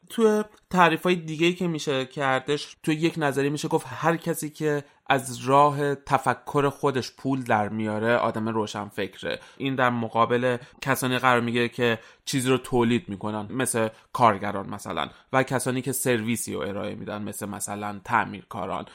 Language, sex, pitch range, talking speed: Persian, male, 110-130 Hz, 150 wpm